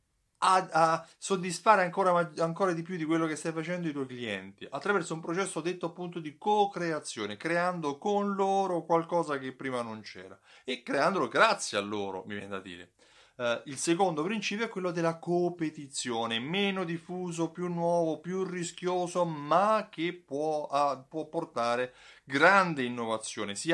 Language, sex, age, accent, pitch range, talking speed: Italian, male, 30-49, native, 120-180 Hz, 150 wpm